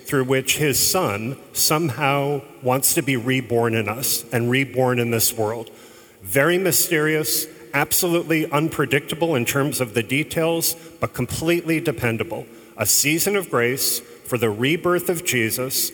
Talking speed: 140 wpm